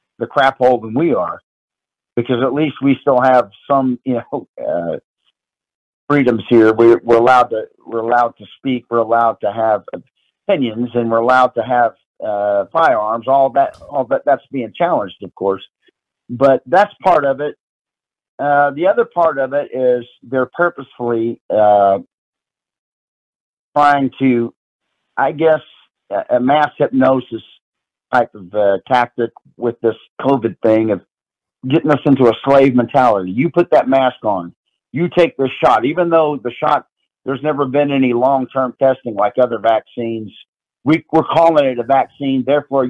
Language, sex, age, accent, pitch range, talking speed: English, male, 50-69, American, 115-145 Hz, 155 wpm